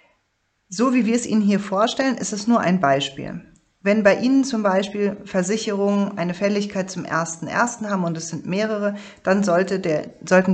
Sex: female